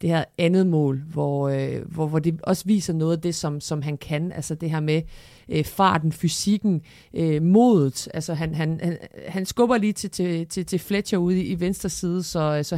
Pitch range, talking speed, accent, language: 150-185 Hz, 215 wpm, native, Danish